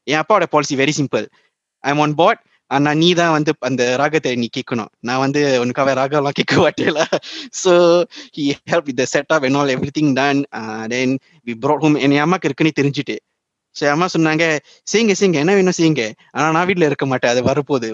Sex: male